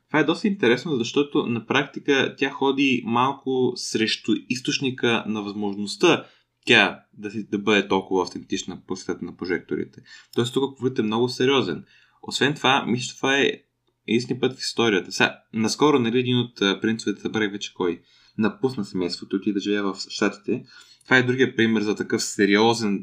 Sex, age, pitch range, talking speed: male, 20-39, 105-130 Hz, 160 wpm